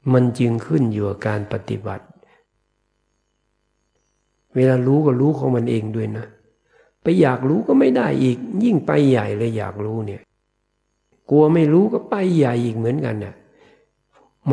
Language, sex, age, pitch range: Thai, male, 60-79, 100-125 Hz